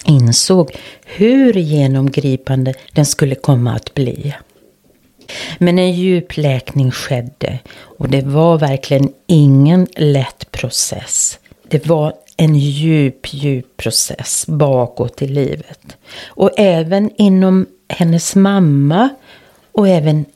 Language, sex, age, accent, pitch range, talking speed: Swedish, female, 40-59, native, 135-175 Hz, 105 wpm